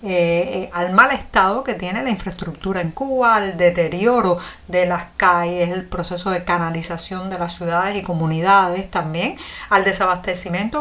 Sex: female